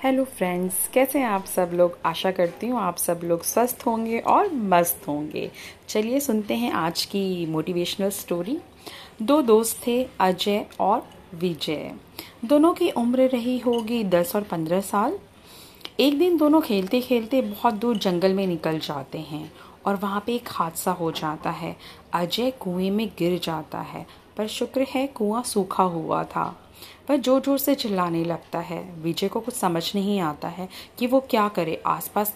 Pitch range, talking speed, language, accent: 175-240 Hz, 170 wpm, Hindi, native